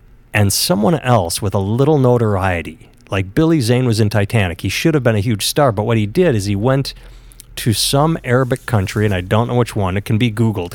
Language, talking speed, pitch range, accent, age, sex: English, 230 wpm, 100-125 Hz, American, 30-49, male